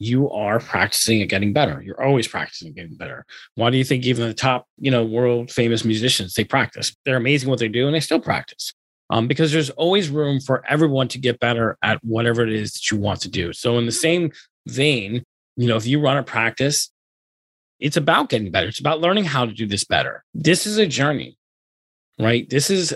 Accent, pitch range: American, 110-140 Hz